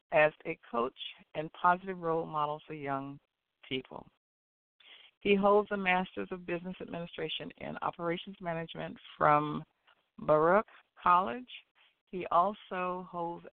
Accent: American